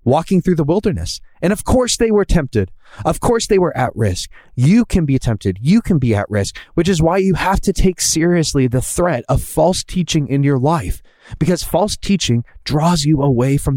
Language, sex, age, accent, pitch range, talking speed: English, male, 20-39, American, 105-155 Hz, 210 wpm